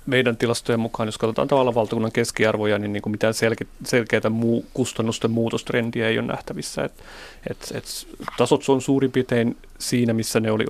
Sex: male